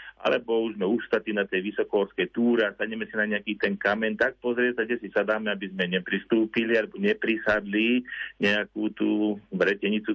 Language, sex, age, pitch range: Slovak, male, 40-59, 100-120 Hz